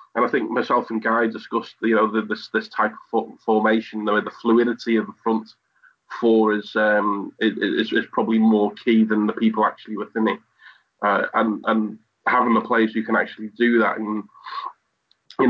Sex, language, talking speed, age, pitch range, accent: male, English, 185 wpm, 20-39, 110-115 Hz, British